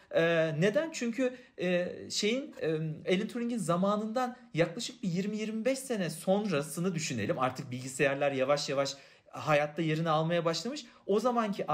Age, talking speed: 40-59, 130 wpm